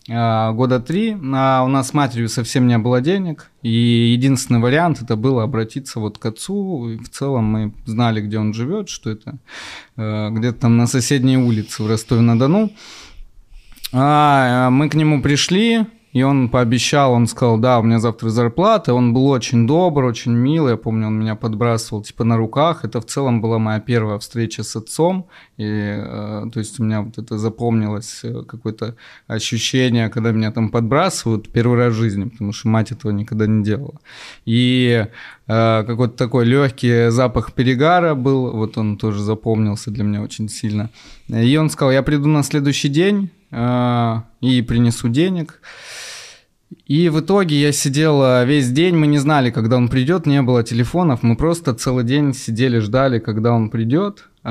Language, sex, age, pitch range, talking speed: Russian, male, 20-39, 110-140 Hz, 170 wpm